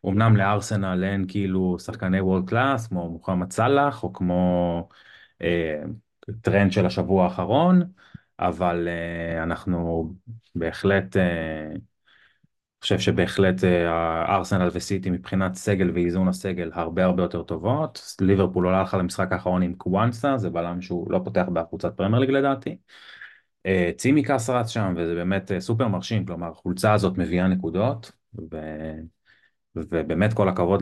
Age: 20-39